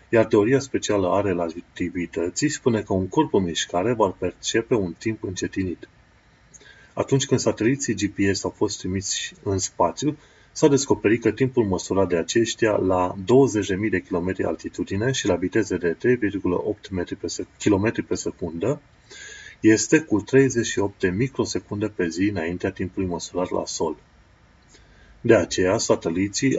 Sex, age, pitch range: male, 30-49, 95-120 Hz